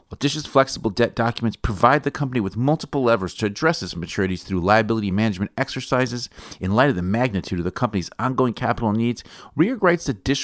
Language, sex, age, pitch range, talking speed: English, male, 40-59, 95-125 Hz, 195 wpm